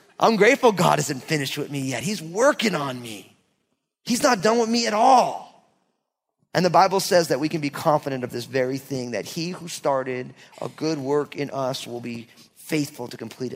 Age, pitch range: 30-49, 135-200 Hz